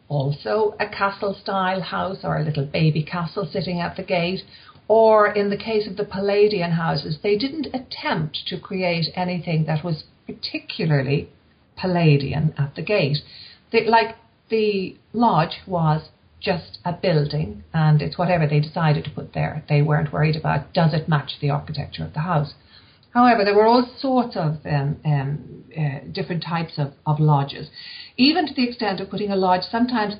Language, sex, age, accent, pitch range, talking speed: English, female, 50-69, Irish, 150-205 Hz, 165 wpm